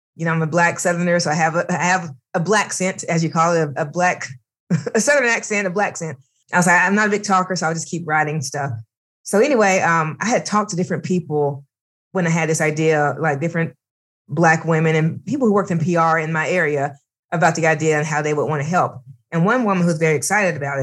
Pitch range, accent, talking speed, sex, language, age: 155-190 Hz, American, 250 wpm, female, English, 20-39